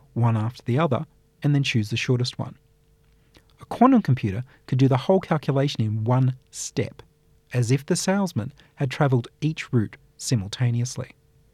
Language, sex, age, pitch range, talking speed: English, male, 40-59, 115-145 Hz, 155 wpm